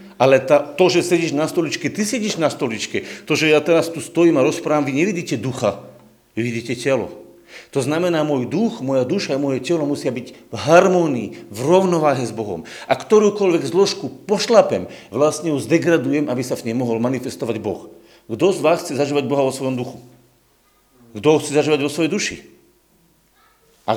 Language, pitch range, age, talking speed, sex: Slovak, 130-175 Hz, 50-69, 180 wpm, male